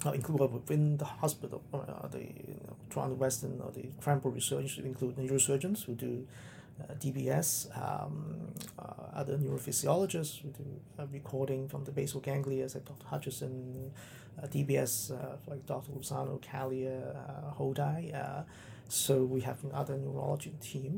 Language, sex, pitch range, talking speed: English, male, 130-145 Hz, 155 wpm